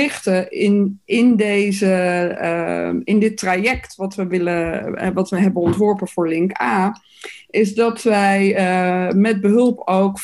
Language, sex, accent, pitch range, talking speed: Dutch, female, Dutch, 180-215 Hz, 140 wpm